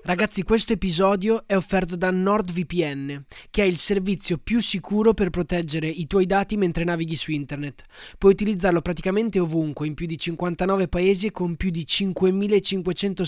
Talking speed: 165 wpm